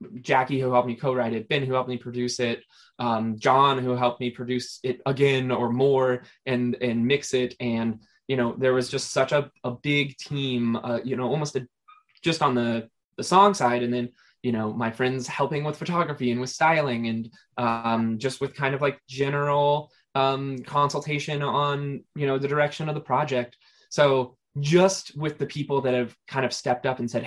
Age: 20-39